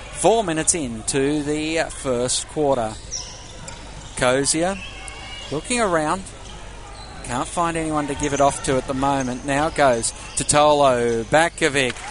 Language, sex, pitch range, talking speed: English, male, 125-165 Hz, 130 wpm